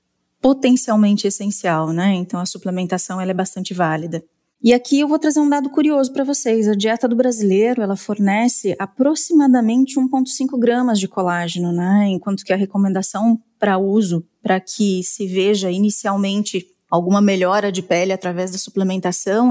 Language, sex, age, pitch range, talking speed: Portuguese, female, 20-39, 190-230 Hz, 150 wpm